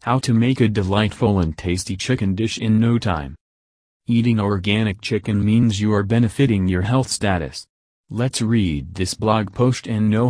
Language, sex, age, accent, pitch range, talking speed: English, male, 30-49, American, 95-115 Hz, 170 wpm